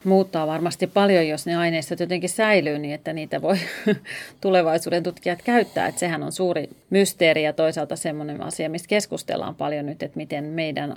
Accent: native